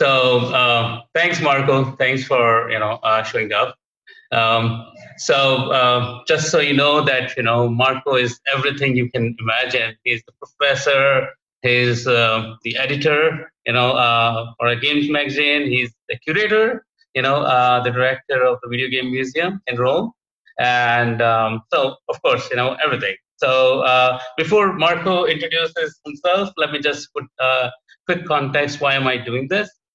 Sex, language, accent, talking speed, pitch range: male, English, Indian, 165 wpm, 120-140 Hz